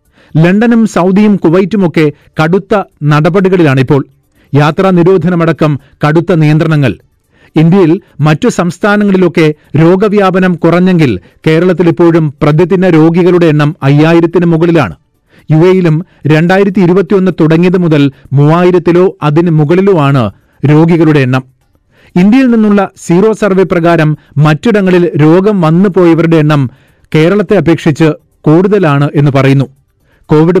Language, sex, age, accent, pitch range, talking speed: Malayalam, male, 40-59, native, 150-185 Hz, 90 wpm